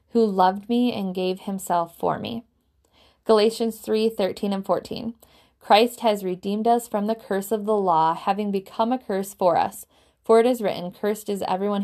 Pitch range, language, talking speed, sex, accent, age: 185-230 Hz, English, 180 wpm, female, American, 20-39